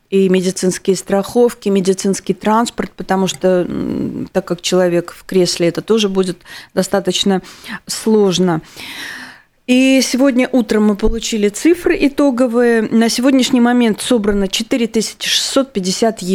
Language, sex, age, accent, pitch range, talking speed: Russian, female, 30-49, native, 185-225 Hz, 105 wpm